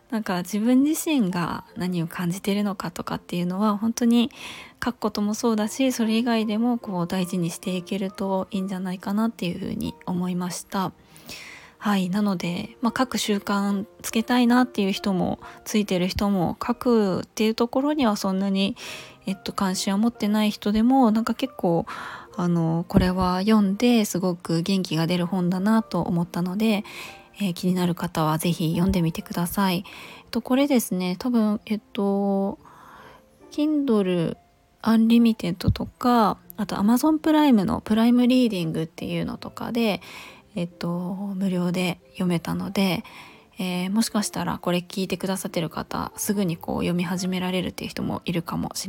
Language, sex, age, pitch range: Japanese, female, 20-39, 180-225 Hz